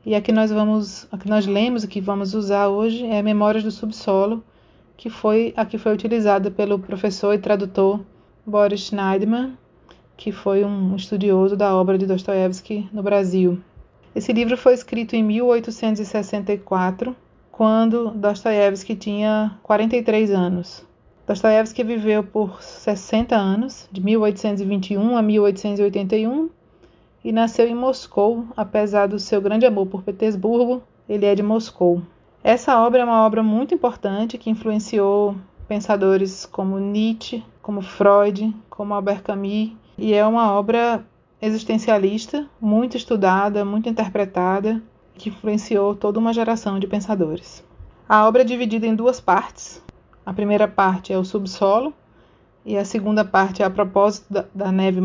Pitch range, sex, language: 200-225 Hz, female, Portuguese